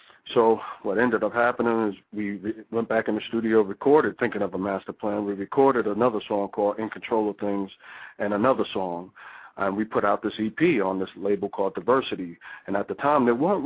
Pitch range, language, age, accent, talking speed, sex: 100-115 Hz, English, 40-59, American, 205 wpm, male